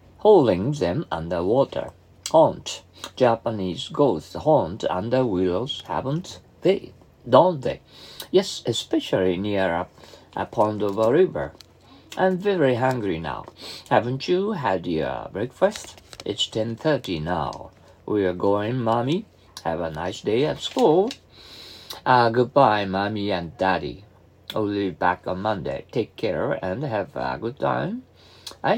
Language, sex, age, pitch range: Japanese, male, 50-69, 95-125 Hz